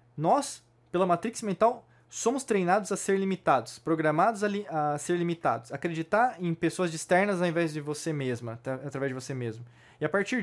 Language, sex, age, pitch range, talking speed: Portuguese, male, 20-39, 140-190 Hz, 190 wpm